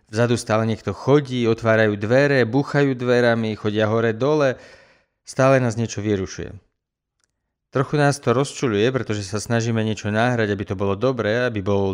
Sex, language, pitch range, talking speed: male, Slovak, 110-140 Hz, 150 wpm